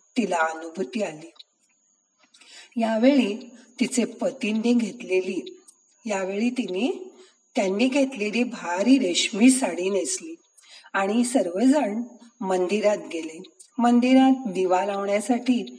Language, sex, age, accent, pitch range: Marathi, female, 40-59, native, 185-260 Hz